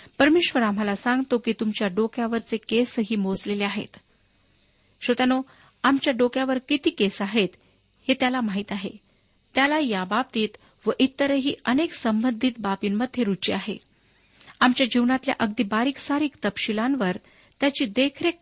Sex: female